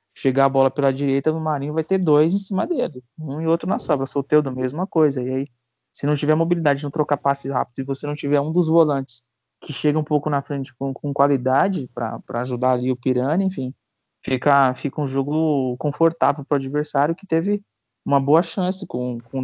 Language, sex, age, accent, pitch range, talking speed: Portuguese, male, 20-39, Brazilian, 125-150 Hz, 215 wpm